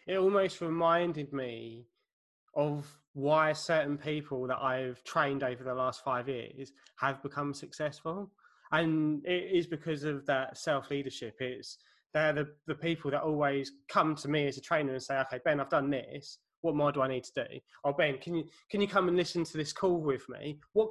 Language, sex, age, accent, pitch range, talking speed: English, male, 20-39, British, 135-165 Hz, 200 wpm